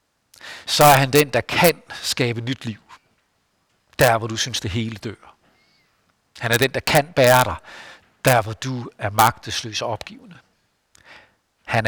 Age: 60-79